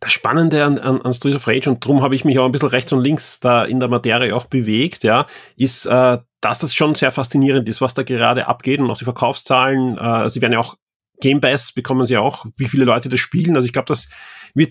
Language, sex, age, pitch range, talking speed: German, male, 30-49, 130-155 Hz, 255 wpm